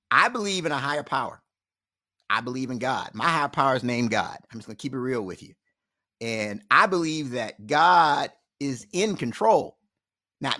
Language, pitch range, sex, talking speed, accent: English, 140-180 Hz, male, 180 wpm, American